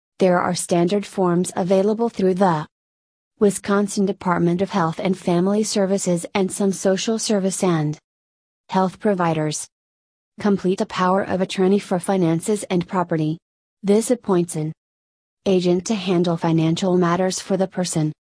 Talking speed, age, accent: 135 wpm, 30-49, American